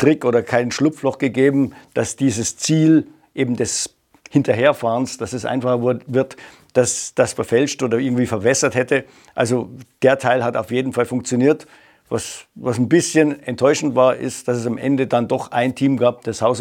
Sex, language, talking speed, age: male, German, 170 wpm, 50-69